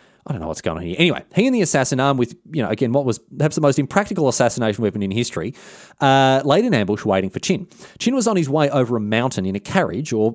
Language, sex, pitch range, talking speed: English, male, 105-145 Hz, 265 wpm